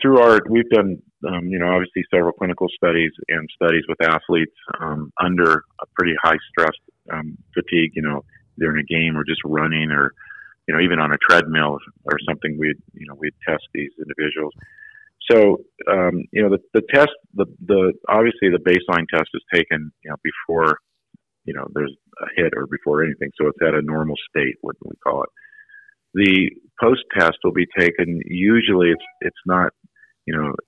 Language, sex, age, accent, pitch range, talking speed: English, male, 50-69, American, 80-100 Hz, 185 wpm